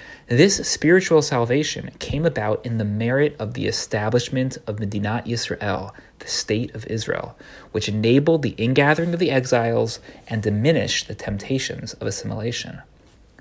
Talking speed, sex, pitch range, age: 140 wpm, male, 110-150 Hz, 30-49